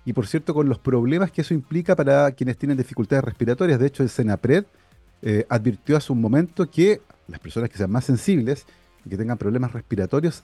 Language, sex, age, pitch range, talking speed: Spanish, male, 40-59, 125-175 Hz, 200 wpm